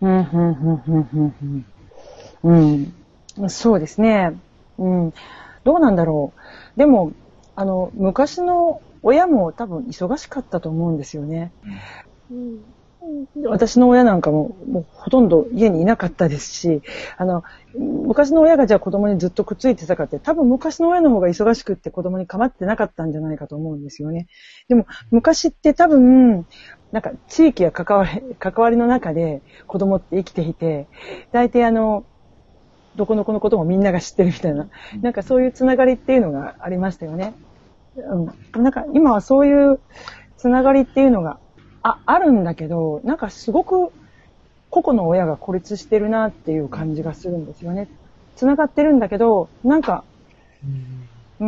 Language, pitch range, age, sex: Japanese, 165-255 Hz, 40-59, female